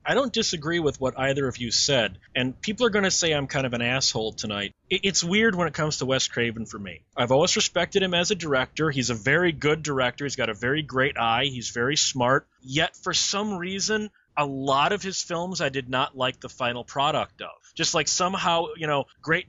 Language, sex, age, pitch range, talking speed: English, male, 30-49, 130-160 Hz, 230 wpm